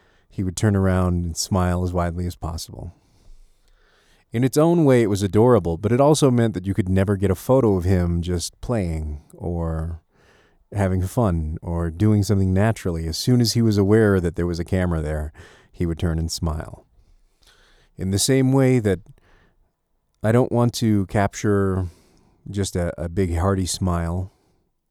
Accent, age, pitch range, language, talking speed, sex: American, 40-59, 85-105 Hz, English, 175 wpm, male